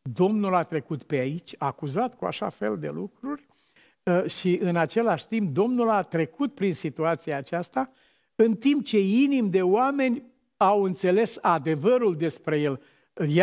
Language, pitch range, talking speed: Romanian, 155-220 Hz, 150 wpm